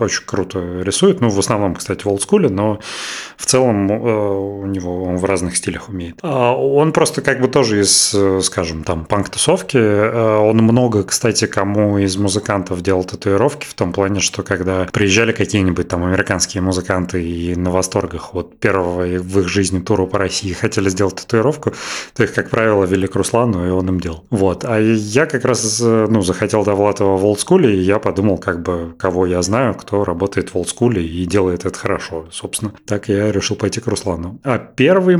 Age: 30-49